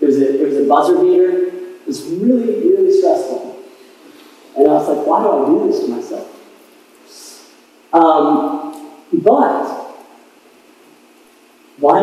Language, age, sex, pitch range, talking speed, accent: English, 40-59, male, 265-390 Hz, 110 wpm, American